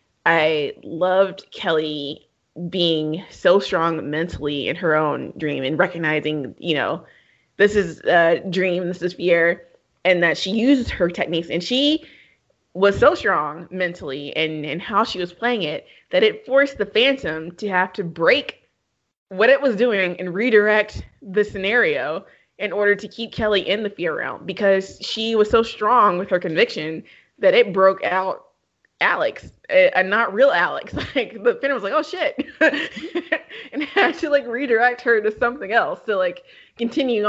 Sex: female